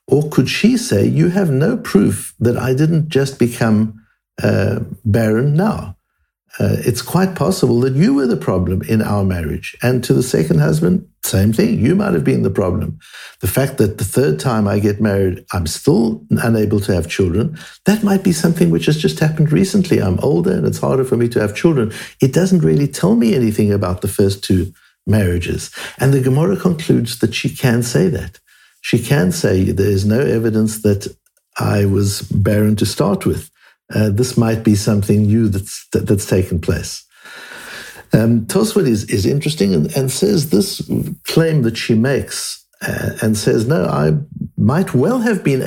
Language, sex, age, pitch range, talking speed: English, male, 60-79, 105-150 Hz, 185 wpm